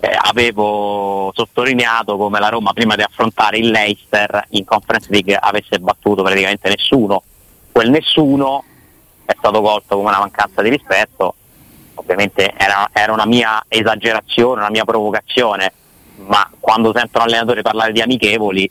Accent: native